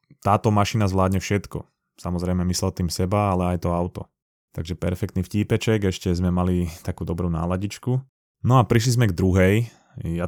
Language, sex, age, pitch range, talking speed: Slovak, male, 20-39, 90-105 Hz, 165 wpm